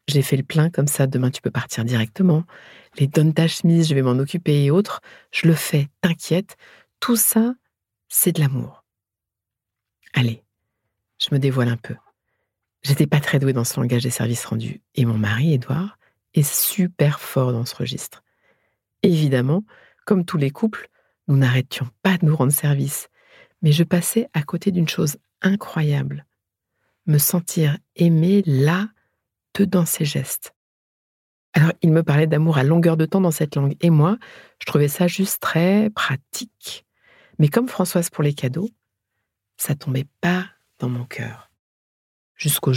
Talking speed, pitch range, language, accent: 165 wpm, 125-175 Hz, French, French